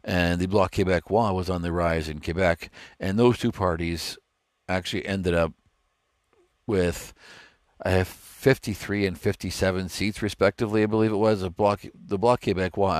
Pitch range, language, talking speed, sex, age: 85-105 Hz, English, 155 wpm, male, 50-69